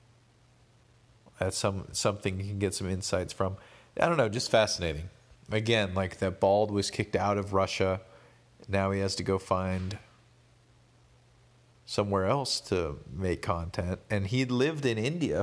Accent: American